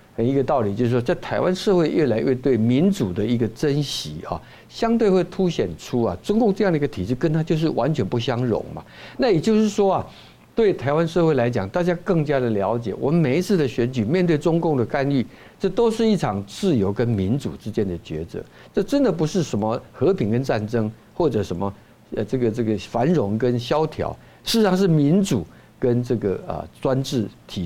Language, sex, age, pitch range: Chinese, male, 60-79, 110-170 Hz